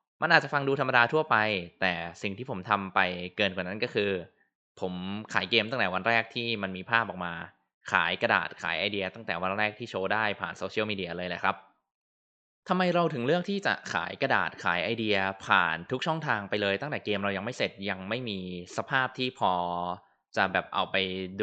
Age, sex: 20-39, male